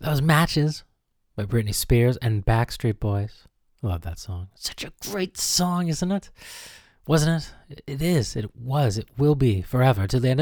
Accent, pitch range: American, 95-135 Hz